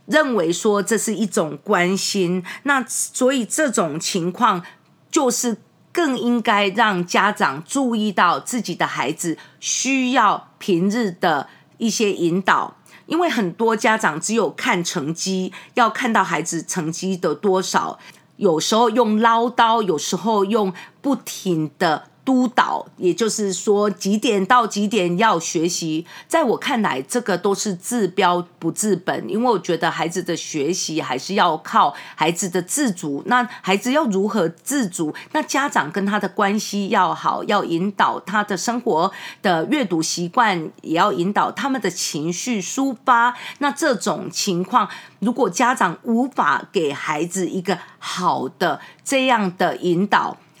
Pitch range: 175-240 Hz